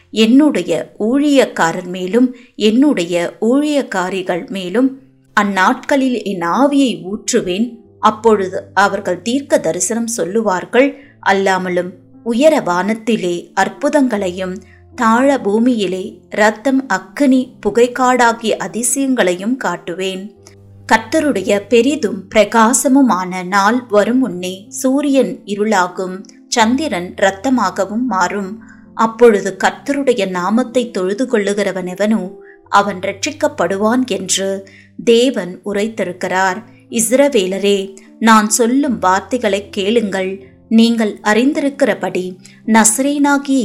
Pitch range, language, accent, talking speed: 190-255 Hz, Tamil, native, 75 wpm